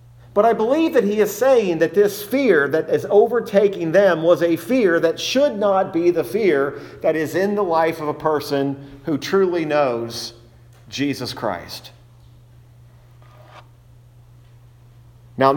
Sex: male